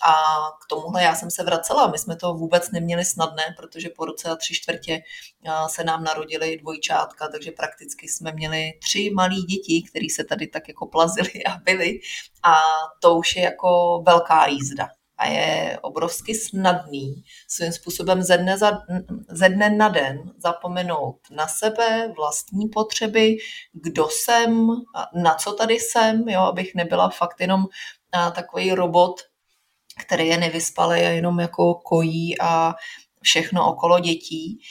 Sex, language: female, Czech